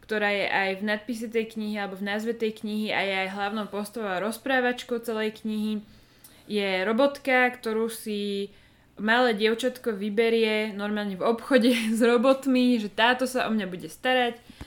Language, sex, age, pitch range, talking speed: Slovak, female, 20-39, 205-235 Hz, 160 wpm